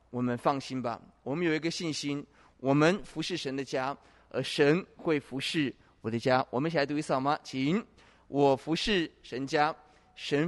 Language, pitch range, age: Chinese, 130-155 Hz, 20-39